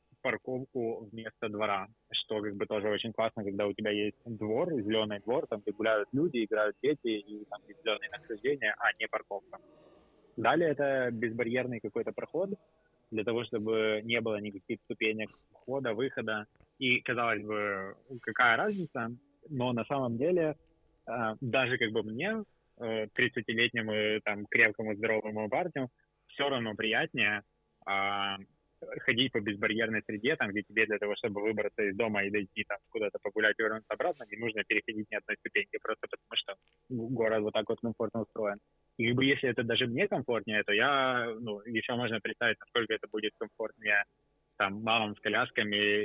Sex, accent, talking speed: male, native, 160 wpm